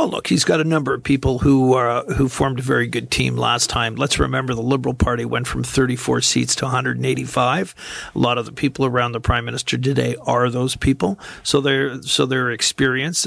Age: 50-69